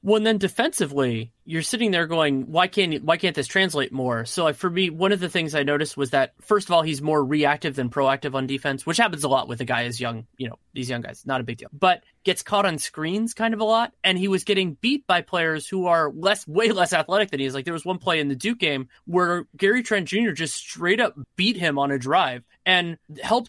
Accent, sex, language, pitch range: American, male, English, 150-200 Hz